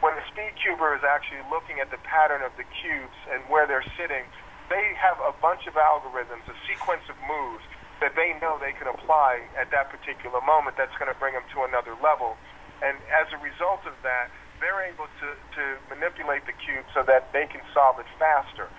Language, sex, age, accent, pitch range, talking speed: English, male, 40-59, American, 130-155 Hz, 210 wpm